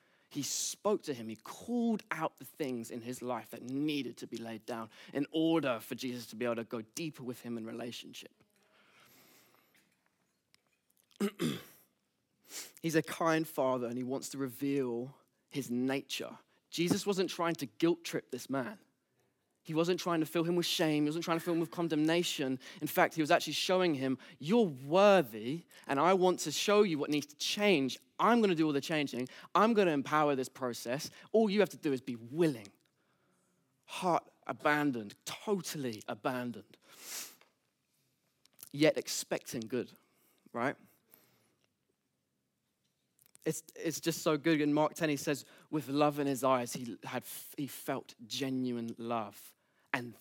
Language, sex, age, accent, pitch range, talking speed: English, male, 20-39, British, 120-165 Hz, 165 wpm